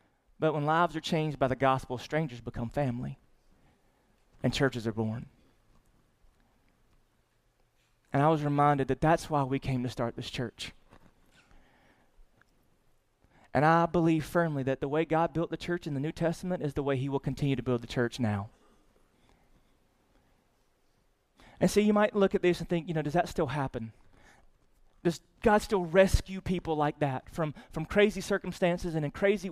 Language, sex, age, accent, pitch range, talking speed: English, male, 30-49, American, 130-175 Hz, 170 wpm